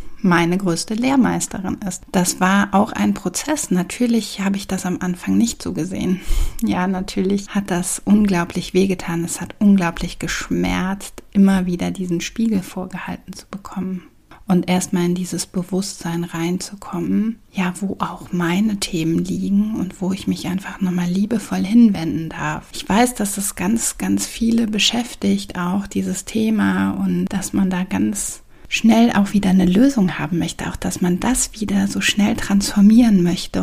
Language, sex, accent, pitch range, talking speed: German, female, German, 180-210 Hz, 160 wpm